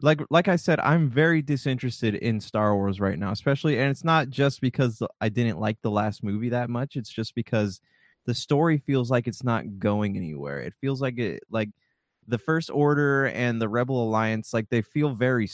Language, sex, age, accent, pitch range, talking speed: English, male, 20-39, American, 105-135 Hz, 205 wpm